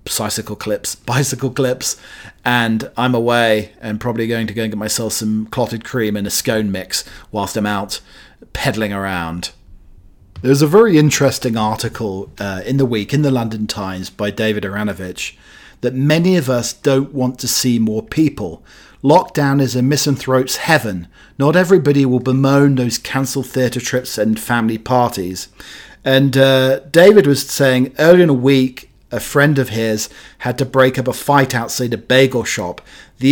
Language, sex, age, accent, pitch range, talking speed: English, male, 40-59, British, 110-135 Hz, 170 wpm